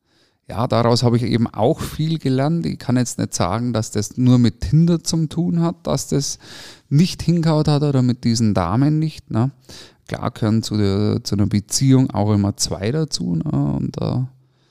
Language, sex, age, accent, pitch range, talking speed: German, male, 30-49, German, 105-135 Hz, 185 wpm